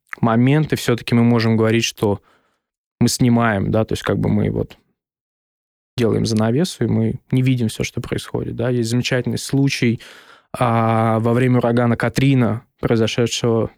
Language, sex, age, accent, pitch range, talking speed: Russian, male, 20-39, native, 115-135 Hz, 155 wpm